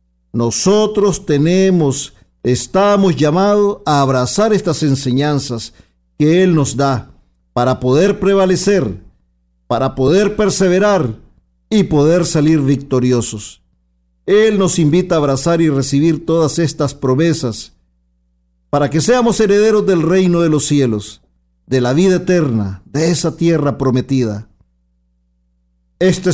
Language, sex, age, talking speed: Spanish, male, 50-69, 115 wpm